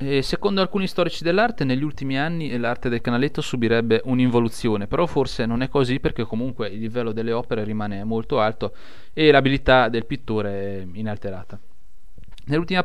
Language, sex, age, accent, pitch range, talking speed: Italian, male, 30-49, native, 110-150 Hz, 155 wpm